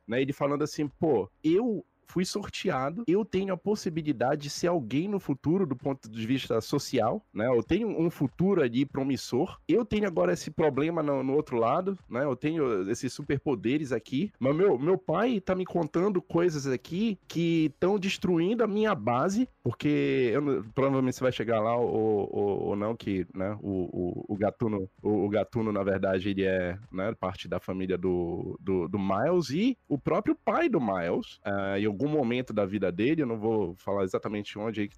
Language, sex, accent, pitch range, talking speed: Portuguese, male, Brazilian, 130-210 Hz, 185 wpm